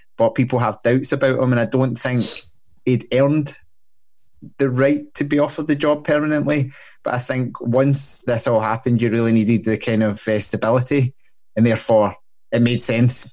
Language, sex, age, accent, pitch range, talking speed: English, male, 20-39, British, 110-125 Hz, 180 wpm